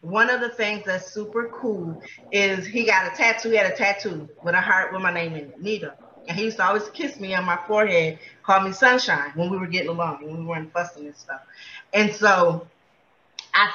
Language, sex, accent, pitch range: English, female, American, 180-225 Hz